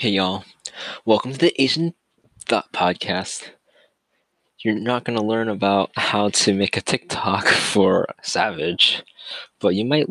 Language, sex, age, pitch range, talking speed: English, male, 20-39, 95-130 Hz, 140 wpm